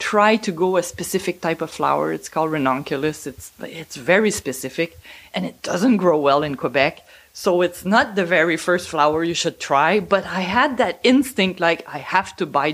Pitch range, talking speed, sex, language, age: 165-240 Hz, 200 wpm, female, English, 30-49